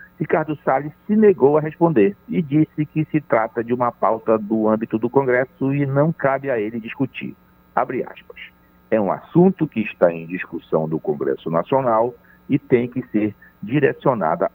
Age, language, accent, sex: 60-79, Portuguese, Brazilian, male